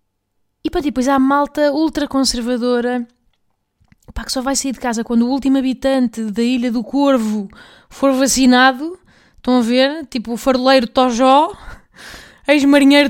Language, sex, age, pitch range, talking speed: Portuguese, female, 20-39, 235-285 Hz, 135 wpm